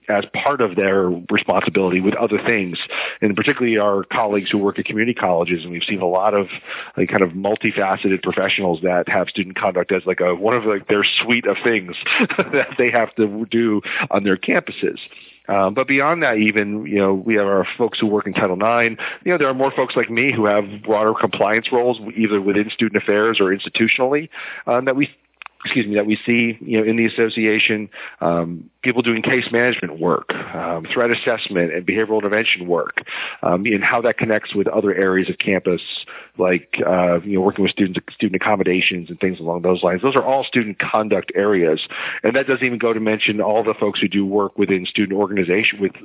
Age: 40-59